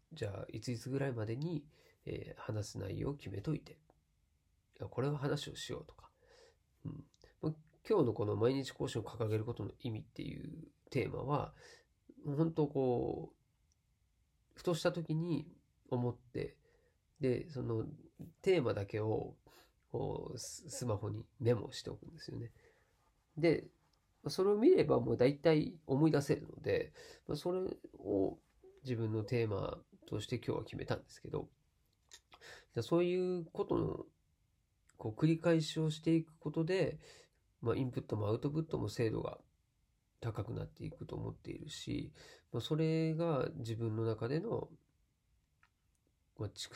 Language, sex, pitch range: Japanese, male, 110-155 Hz